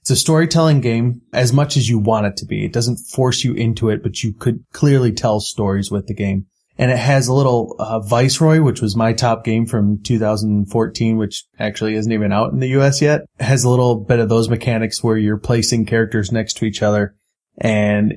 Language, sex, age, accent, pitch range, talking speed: English, male, 20-39, American, 110-130 Hz, 220 wpm